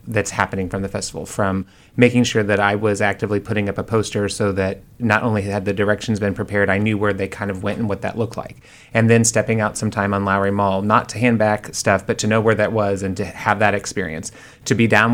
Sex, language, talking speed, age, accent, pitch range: male, English, 260 wpm, 30-49, American, 100-115 Hz